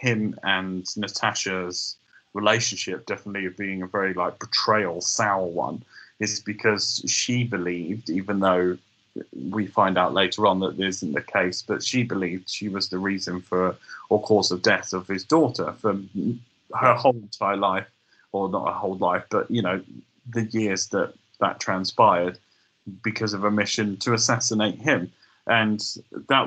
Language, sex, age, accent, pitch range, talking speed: English, male, 30-49, British, 95-120 Hz, 160 wpm